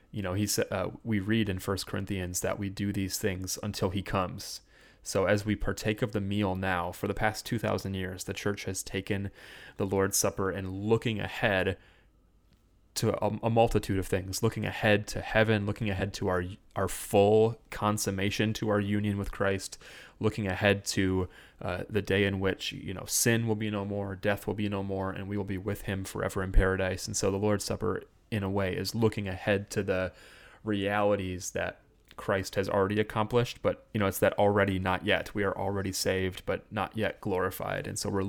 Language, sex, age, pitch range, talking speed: English, male, 30-49, 95-105 Hz, 205 wpm